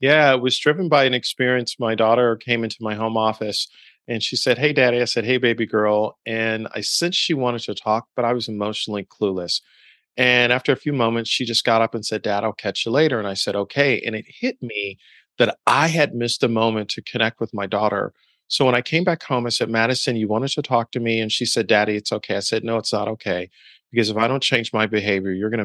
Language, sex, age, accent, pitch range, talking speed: English, male, 40-59, American, 105-125 Hz, 250 wpm